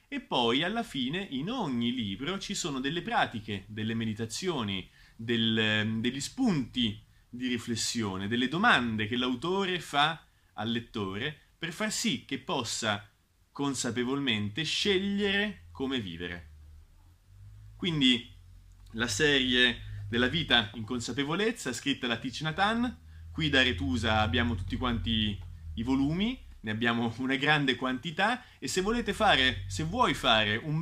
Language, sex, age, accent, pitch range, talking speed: Italian, male, 30-49, native, 105-175 Hz, 130 wpm